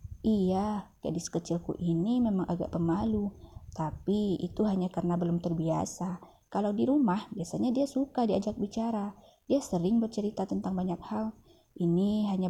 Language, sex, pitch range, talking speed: Indonesian, female, 170-210 Hz, 140 wpm